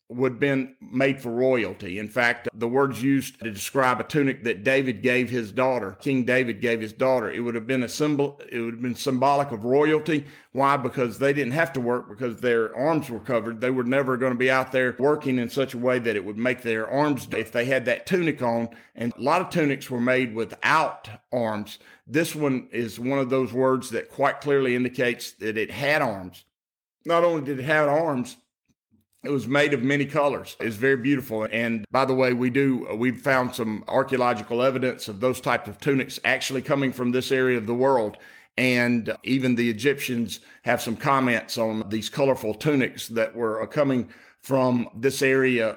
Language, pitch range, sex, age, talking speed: English, 120-140 Hz, male, 50-69, 205 wpm